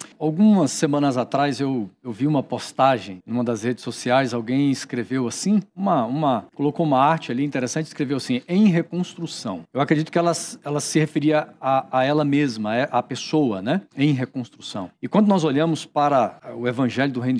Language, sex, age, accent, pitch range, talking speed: Portuguese, male, 50-69, Brazilian, 135-170 Hz, 170 wpm